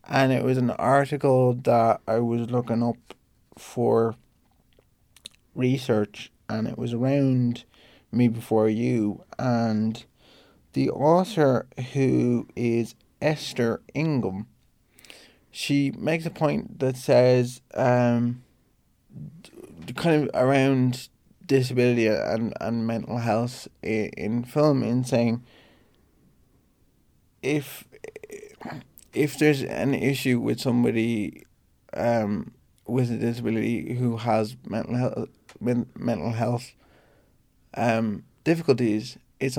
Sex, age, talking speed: male, 20-39, 100 wpm